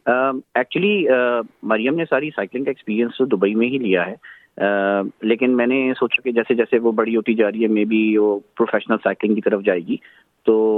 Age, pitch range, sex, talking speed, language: 30-49, 105-120 Hz, male, 200 wpm, Urdu